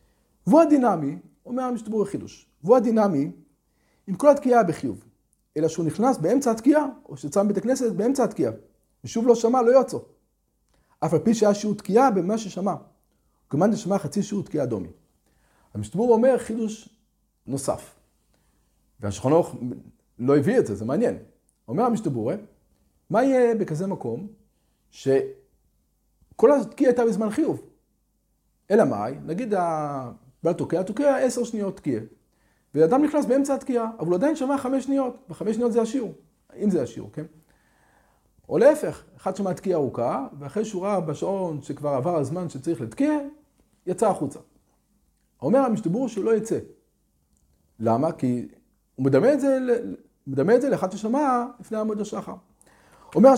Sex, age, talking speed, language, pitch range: male, 40-59, 130 wpm, Hebrew, 155-245 Hz